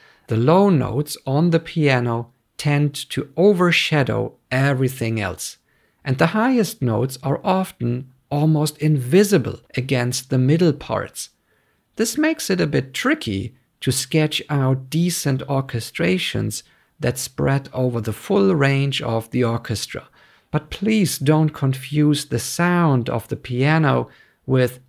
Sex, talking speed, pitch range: male, 130 wpm, 120-155 Hz